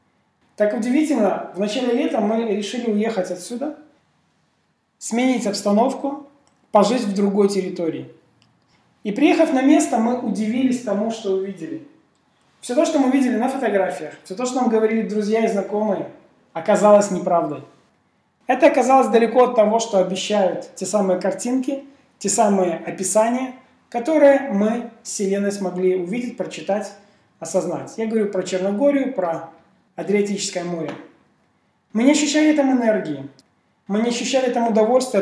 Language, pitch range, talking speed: Russian, 195-250 Hz, 135 wpm